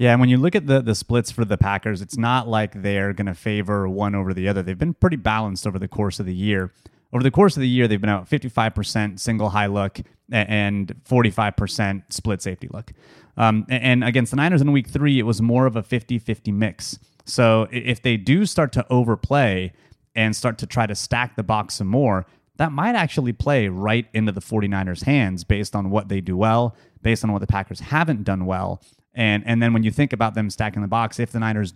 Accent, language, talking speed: American, English, 230 wpm